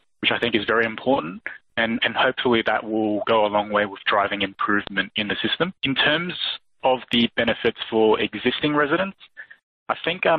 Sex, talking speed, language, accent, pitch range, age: male, 185 wpm, English, Australian, 105-125 Hz, 20-39